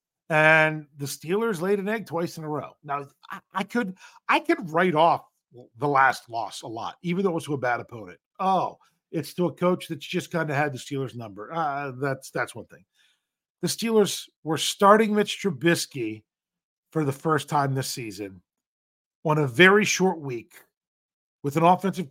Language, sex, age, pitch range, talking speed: English, male, 50-69, 140-195 Hz, 185 wpm